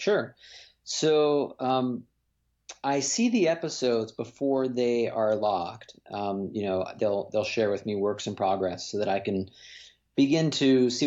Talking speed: 155 wpm